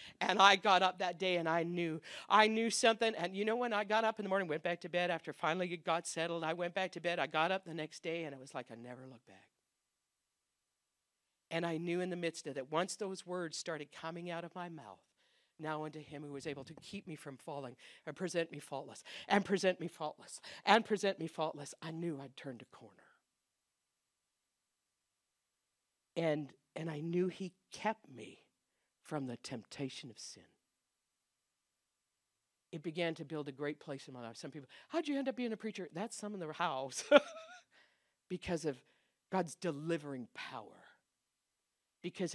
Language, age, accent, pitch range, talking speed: English, 50-69, American, 150-190 Hz, 195 wpm